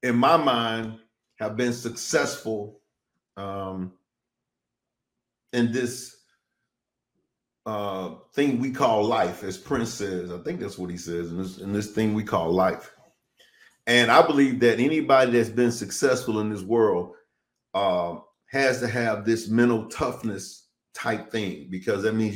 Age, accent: 40-59, American